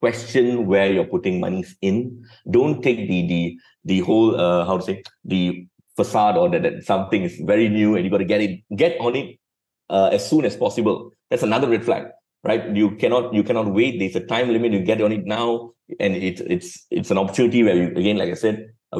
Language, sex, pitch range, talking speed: English, male, 105-150 Hz, 225 wpm